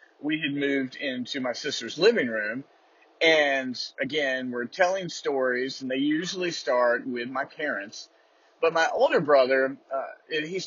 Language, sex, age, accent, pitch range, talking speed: English, male, 30-49, American, 145-220 Hz, 145 wpm